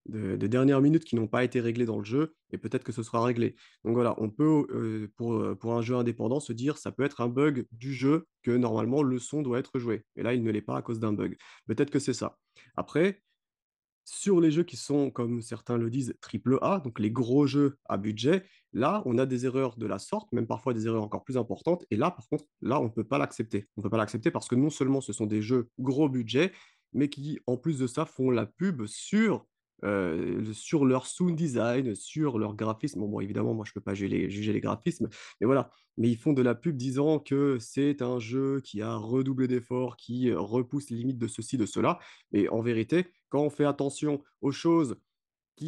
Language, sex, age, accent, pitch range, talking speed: French, male, 30-49, French, 110-140 Hz, 240 wpm